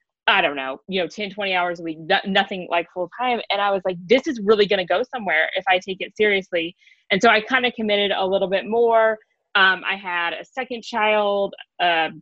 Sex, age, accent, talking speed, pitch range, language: female, 20-39, American, 230 wpm, 185-225 Hz, English